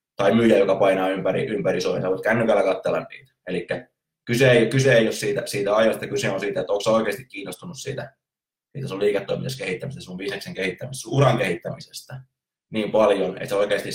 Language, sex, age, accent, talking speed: Finnish, male, 20-39, native, 180 wpm